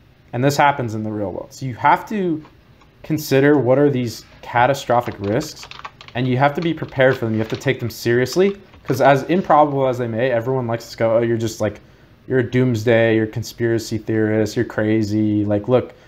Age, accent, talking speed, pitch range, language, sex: 20-39, American, 210 wpm, 115-135 Hz, English, male